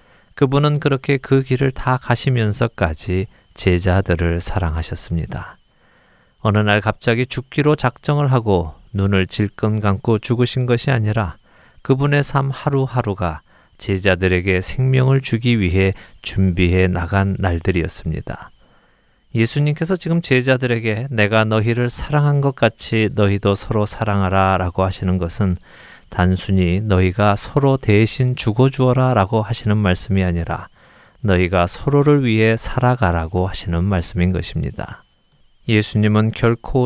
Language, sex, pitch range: Korean, male, 95-125 Hz